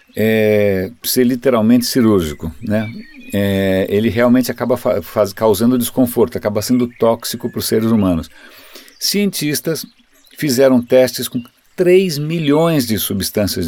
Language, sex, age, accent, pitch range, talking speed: Portuguese, male, 50-69, Brazilian, 105-135 Hz, 125 wpm